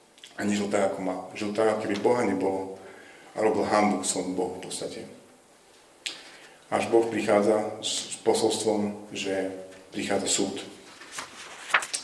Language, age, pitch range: Slovak, 30-49, 100-115 Hz